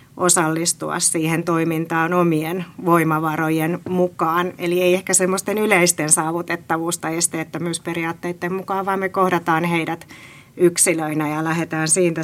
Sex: female